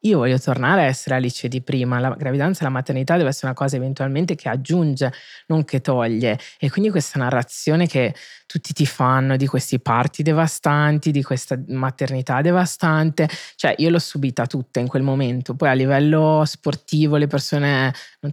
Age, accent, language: 20-39, native, Italian